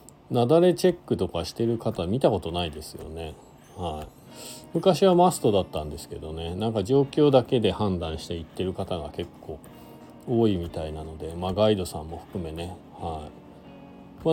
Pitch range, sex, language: 90-125 Hz, male, Japanese